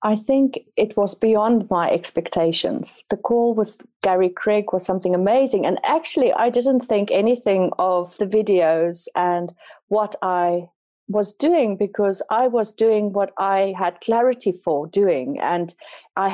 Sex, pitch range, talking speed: female, 180-230 Hz, 150 wpm